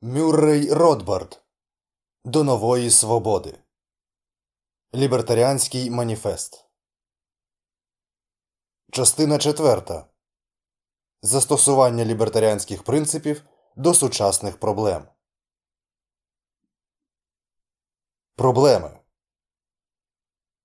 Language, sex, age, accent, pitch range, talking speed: Ukrainian, male, 20-39, native, 110-140 Hz, 45 wpm